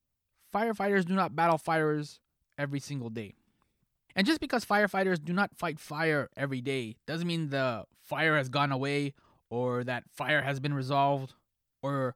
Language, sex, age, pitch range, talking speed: English, male, 20-39, 135-180 Hz, 160 wpm